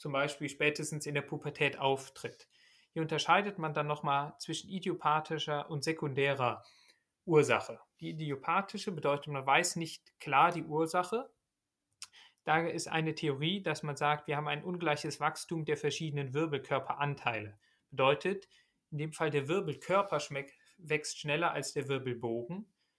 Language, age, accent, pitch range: German, 30-49, German, 140-165 Hz